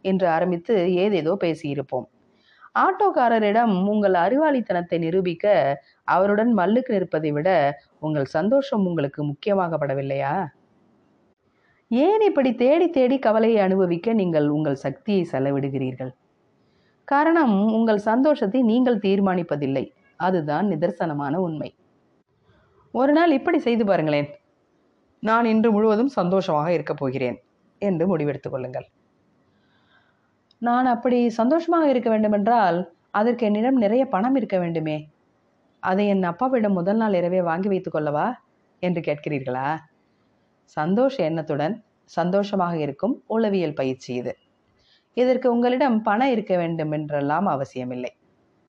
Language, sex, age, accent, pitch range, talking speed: Tamil, female, 30-49, native, 155-235 Hz, 100 wpm